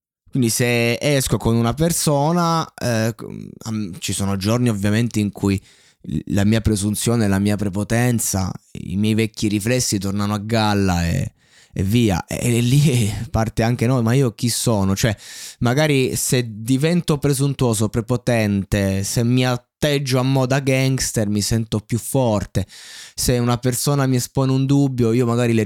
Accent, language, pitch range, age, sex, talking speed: native, Italian, 105-125 Hz, 20-39, male, 150 wpm